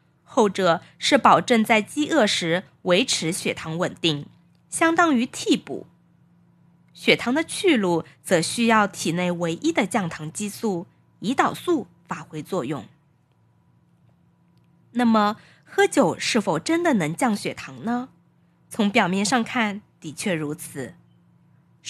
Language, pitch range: Chinese, 165-230 Hz